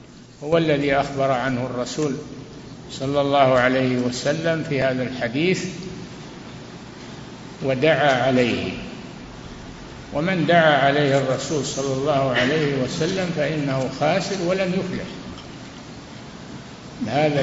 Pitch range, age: 135-160 Hz, 60-79